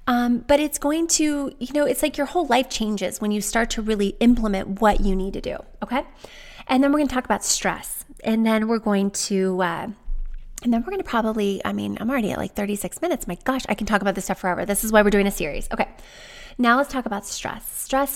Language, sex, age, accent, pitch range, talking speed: English, female, 20-39, American, 205-295 Hz, 245 wpm